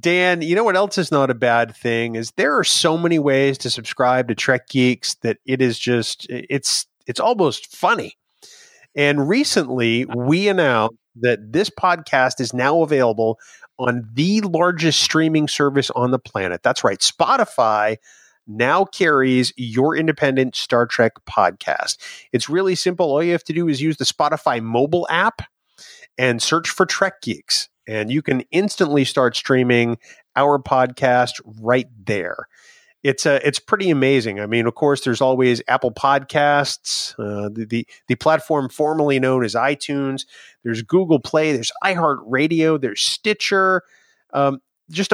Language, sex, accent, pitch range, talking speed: English, male, American, 120-160 Hz, 155 wpm